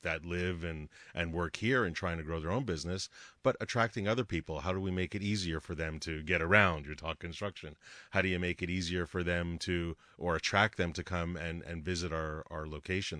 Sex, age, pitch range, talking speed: male, 30-49, 85-100 Hz, 230 wpm